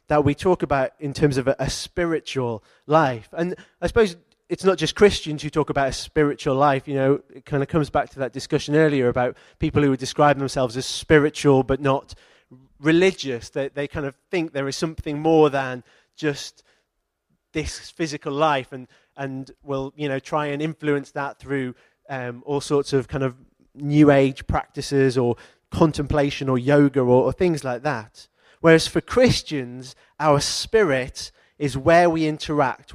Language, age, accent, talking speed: English, 20-39, British, 175 wpm